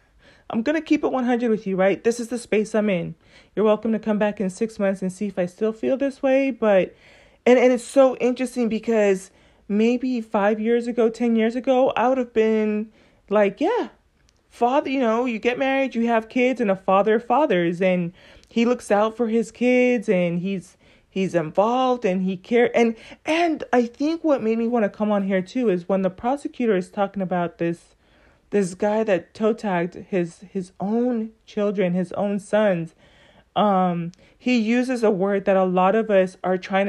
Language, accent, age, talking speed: English, American, 30-49, 200 wpm